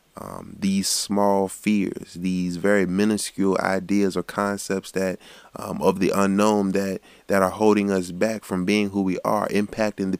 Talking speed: 160 wpm